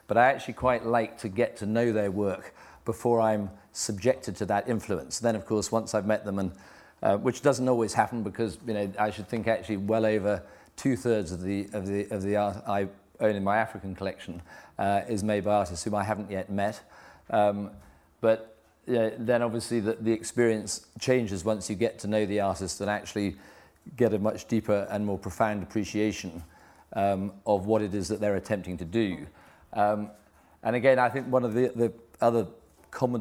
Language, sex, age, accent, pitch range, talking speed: English, male, 40-59, British, 100-115 Hz, 200 wpm